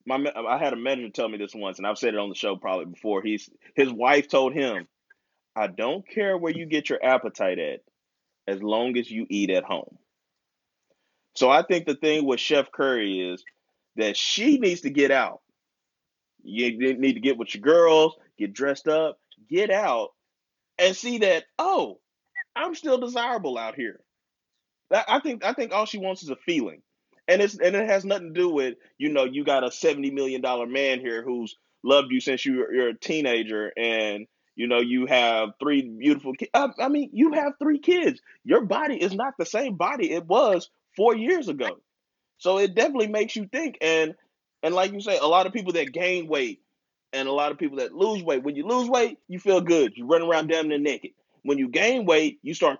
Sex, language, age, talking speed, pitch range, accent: male, English, 30-49, 210 wpm, 130-215 Hz, American